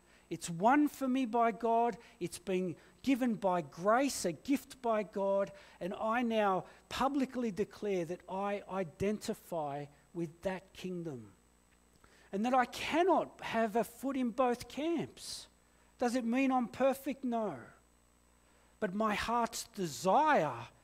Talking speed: 130 wpm